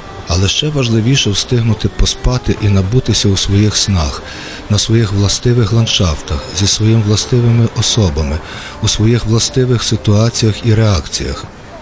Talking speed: 120 wpm